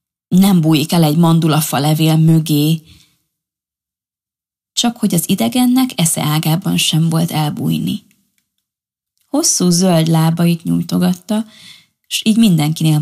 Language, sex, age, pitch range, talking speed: Hungarian, female, 20-39, 155-200 Hz, 105 wpm